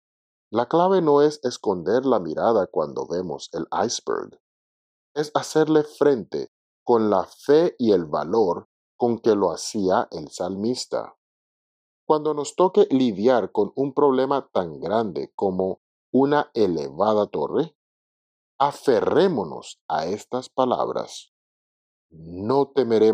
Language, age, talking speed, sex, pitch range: Spanish, 50-69, 115 wpm, male, 100-150 Hz